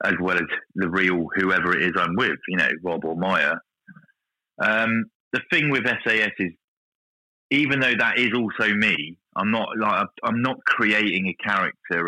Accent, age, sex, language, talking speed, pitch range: British, 30-49, male, English, 175 wpm, 90-130 Hz